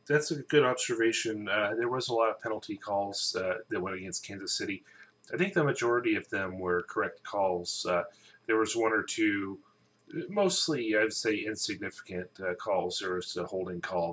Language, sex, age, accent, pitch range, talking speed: English, male, 30-49, American, 90-145 Hz, 185 wpm